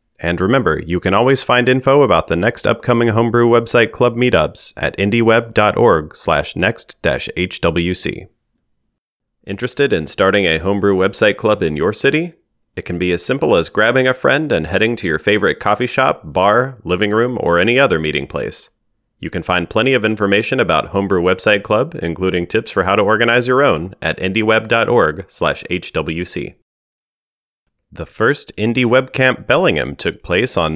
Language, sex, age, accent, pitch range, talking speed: English, male, 30-49, American, 90-120 Hz, 150 wpm